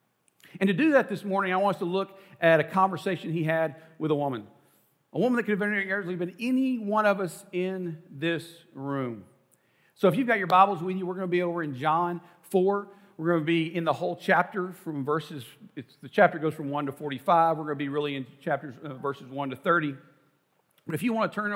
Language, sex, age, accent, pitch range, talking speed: English, male, 50-69, American, 160-200 Hz, 235 wpm